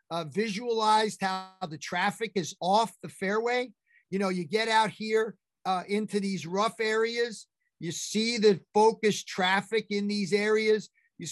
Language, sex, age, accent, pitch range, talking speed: English, male, 50-69, American, 195-235 Hz, 155 wpm